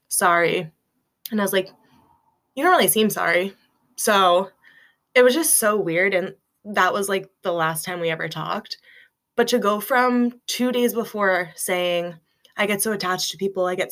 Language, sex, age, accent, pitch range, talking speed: English, female, 20-39, American, 175-215 Hz, 180 wpm